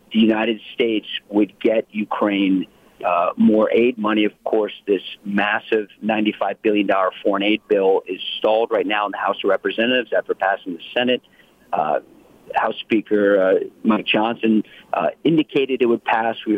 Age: 40-59